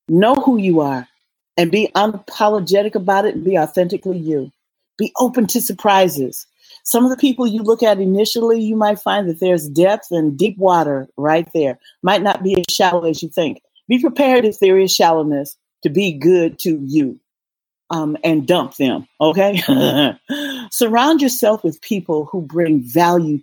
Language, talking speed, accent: English, 170 wpm, American